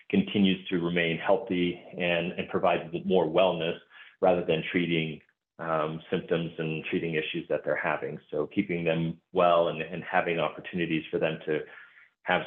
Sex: male